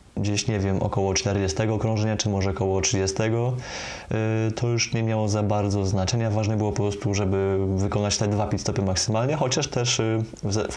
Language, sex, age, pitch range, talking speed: Polish, male, 20-39, 100-115 Hz, 165 wpm